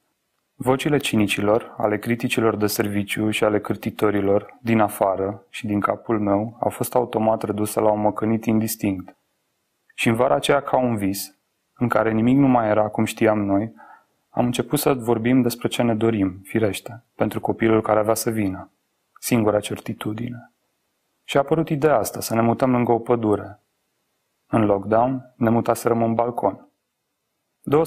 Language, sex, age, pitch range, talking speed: Romanian, male, 30-49, 105-120 Hz, 160 wpm